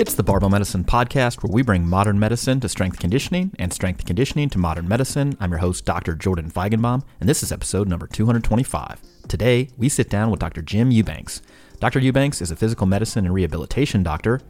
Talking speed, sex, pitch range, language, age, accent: 200 wpm, male, 90-120 Hz, English, 30-49, American